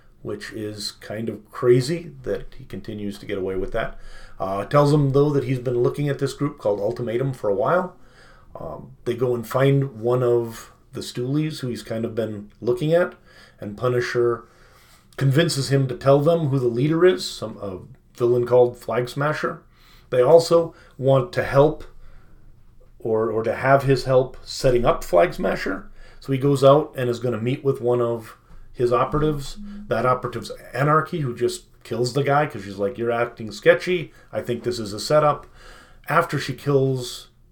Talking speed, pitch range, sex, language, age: 180 wpm, 115-140 Hz, male, English, 30-49